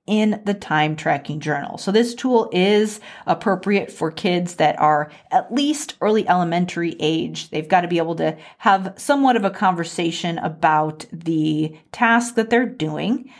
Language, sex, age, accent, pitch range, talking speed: English, female, 40-59, American, 160-230 Hz, 155 wpm